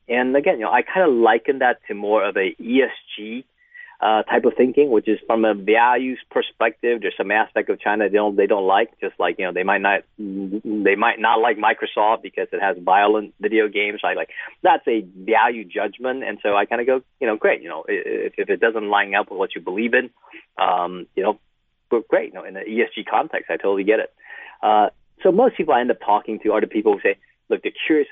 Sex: male